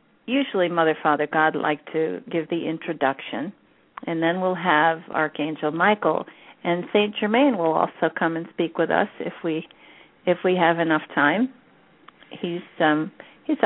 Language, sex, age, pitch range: English, female, 50-69, 160-195 Hz